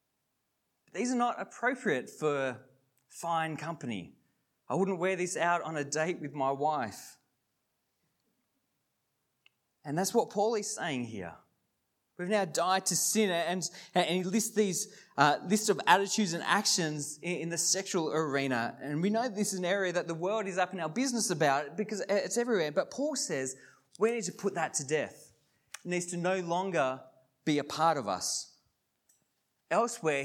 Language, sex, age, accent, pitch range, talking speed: English, male, 20-39, Australian, 145-210 Hz, 170 wpm